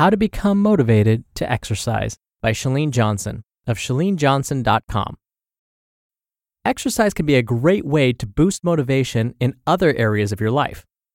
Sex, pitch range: male, 115-170 Hz